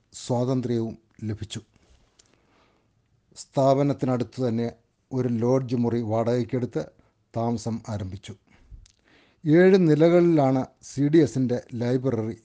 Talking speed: 75 wpm